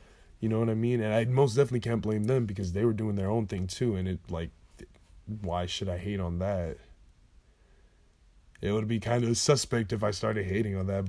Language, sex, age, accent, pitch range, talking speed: English, male, 20-39, American, 90-115 Hz, 220 wpm